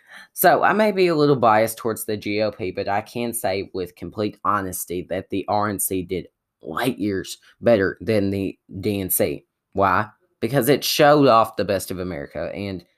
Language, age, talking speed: English, 10-29, 170 wpm